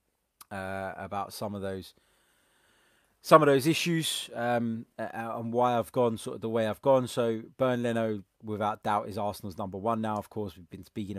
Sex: male